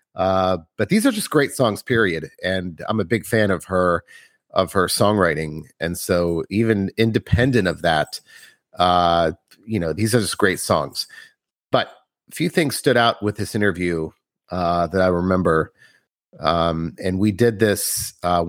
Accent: American